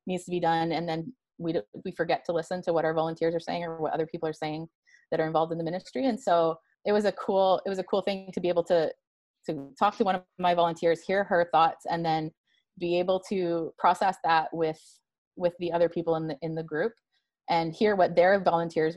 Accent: American